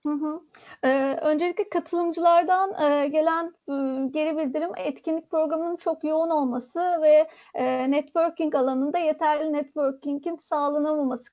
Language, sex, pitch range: Turkish, female, 280-330 Hz